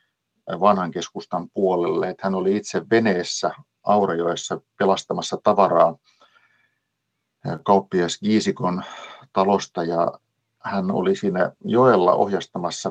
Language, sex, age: Finnish, male, 50-69